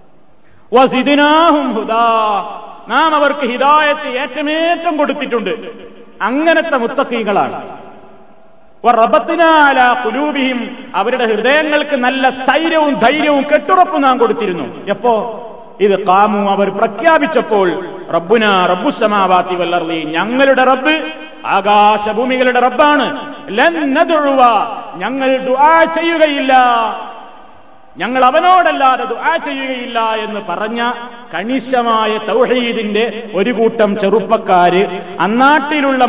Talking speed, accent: 75 wpm, native